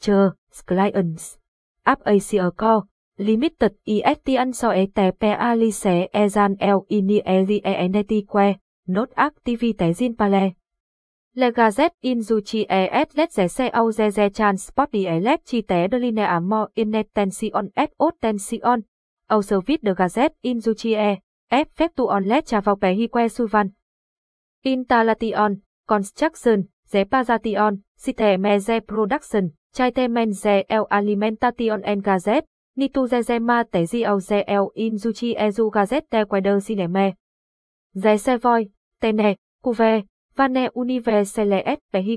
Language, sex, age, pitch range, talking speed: English, female, 20-39, 205-240 Hz, 115 wpm